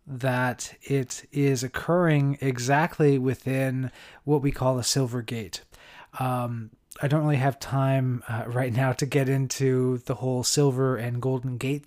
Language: English